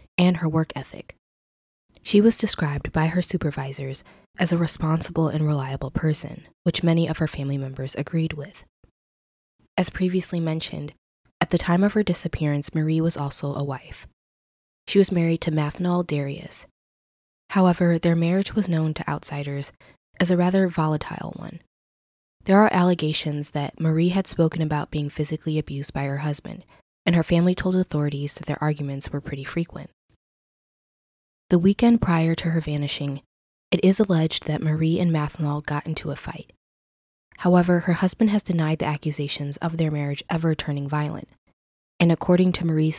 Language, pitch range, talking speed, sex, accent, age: English, 145-175 Hz, 160 wpm, female, American, 20-39